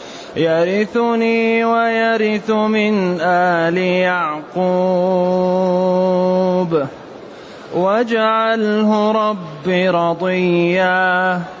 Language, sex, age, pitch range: Arabic, male, 30-49, 215-235 Hz